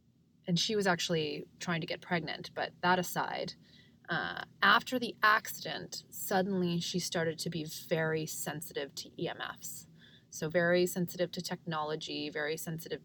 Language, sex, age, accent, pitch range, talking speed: English, female, 20-39, American, 160-195 Hz, 145 wpm